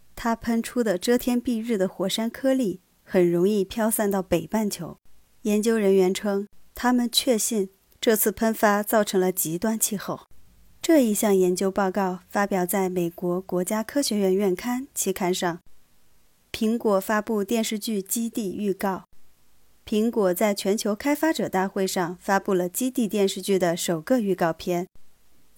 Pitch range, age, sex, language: 185-230 Hz, 20-39, female, Chinese